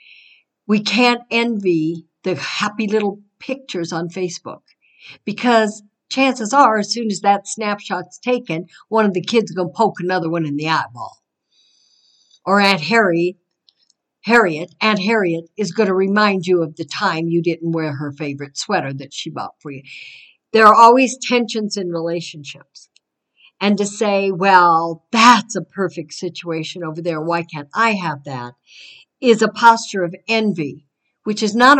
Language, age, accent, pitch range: English, 60-79, American, 170-215 Hz